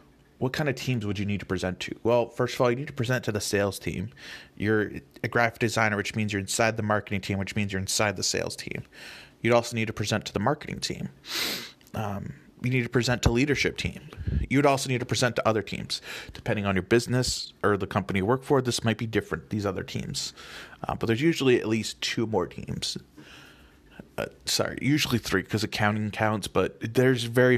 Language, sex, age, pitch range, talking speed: English, male, 30-49, 100-125 Hz, 220 wpm